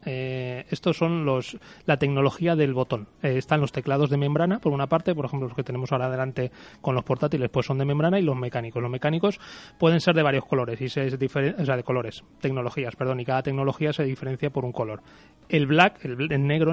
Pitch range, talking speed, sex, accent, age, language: 130-165 Hz, 220 wpm, male, Spanish, 30-49, Spanish